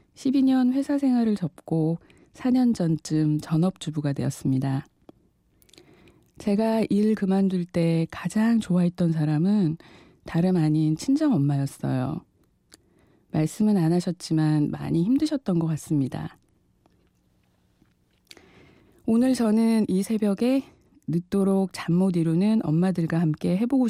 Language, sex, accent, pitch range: Korean, female, native, 160-210 Hz